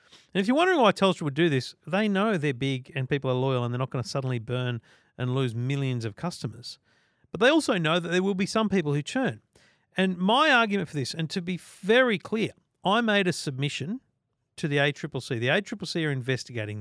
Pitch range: 130-180 Hz